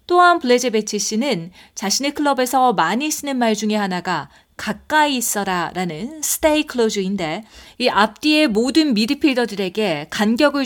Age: 40-59